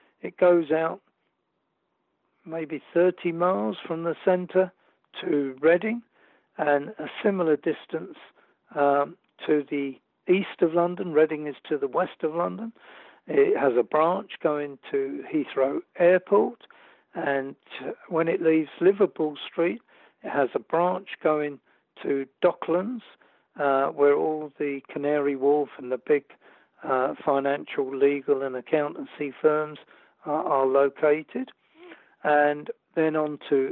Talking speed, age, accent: 125 wpm, 60-79, British